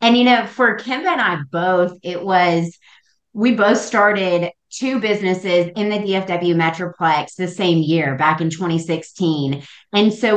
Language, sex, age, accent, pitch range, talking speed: English, female, 30-49, American, 165-210 Hz, 155 wpm